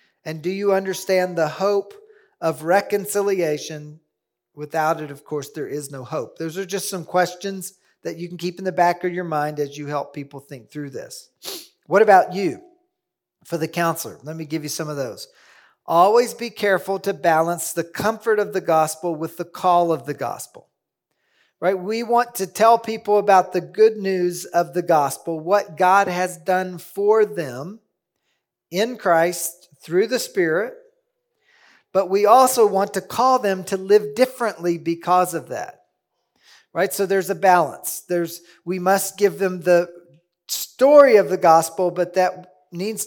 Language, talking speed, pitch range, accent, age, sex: English, 170 wpm, 160-200 Hz, American, 40-59, male